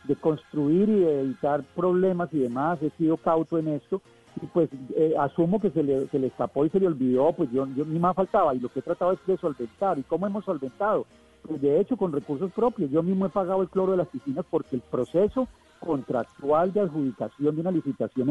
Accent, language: Colombian, Spanish